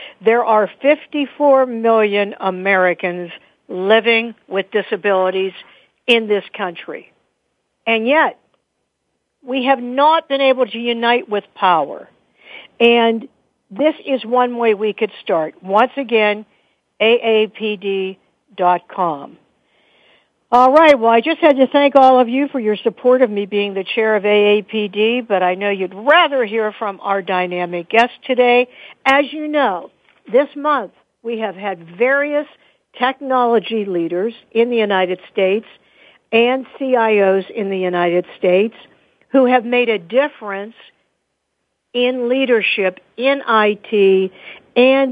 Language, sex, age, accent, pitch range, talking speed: English, female, 60-79, American, 195-255 Hz, 130 wpm